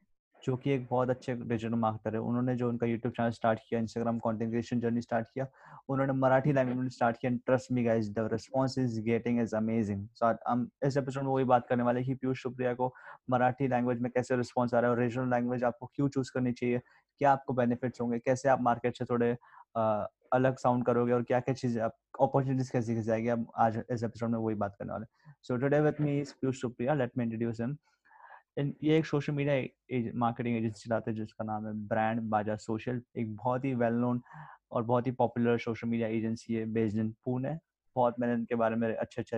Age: 20-39